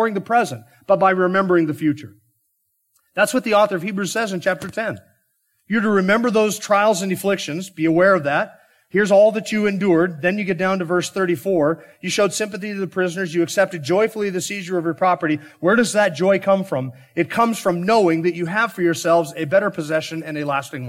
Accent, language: American, English